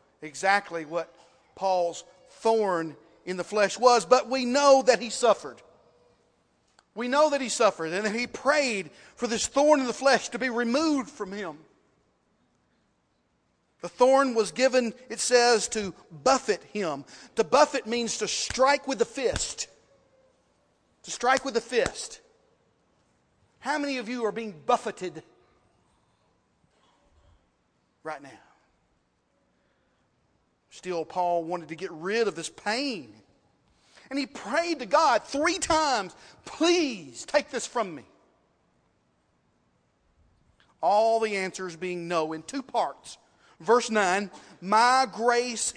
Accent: American